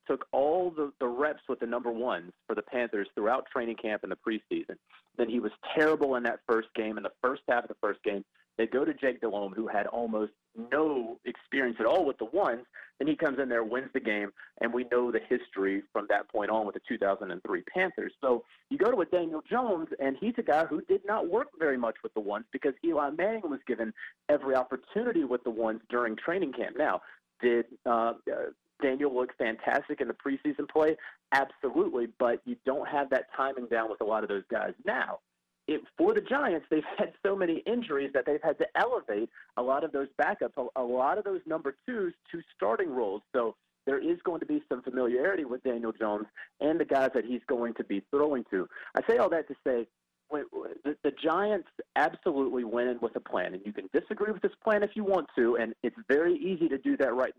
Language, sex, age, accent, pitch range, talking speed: English, male, 30-49, American, 120-195 Hz, 220 wpm